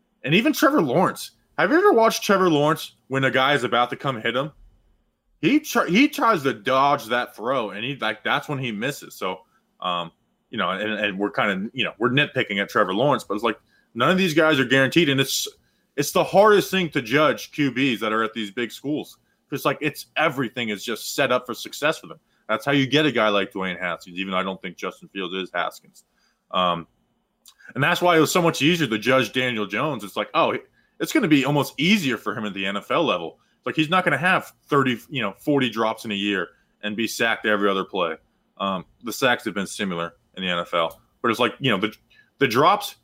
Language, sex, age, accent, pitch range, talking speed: English, male, 20-39, American, 105-155 Hz, 240 wpm